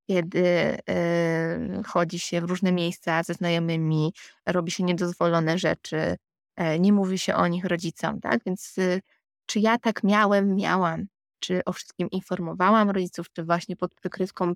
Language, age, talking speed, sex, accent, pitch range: Polish, 20-39, 155 wpm, female, native, 175-210 Hz